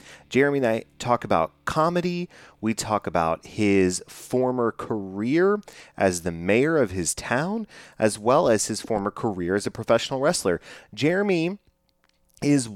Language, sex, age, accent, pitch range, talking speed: English, male, 30-49, American, 95-130 Hz, 140 wpm